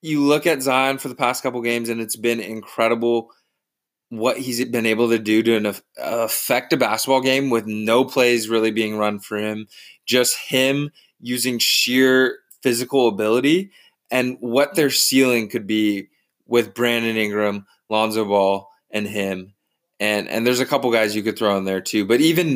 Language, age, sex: English, 20-39, male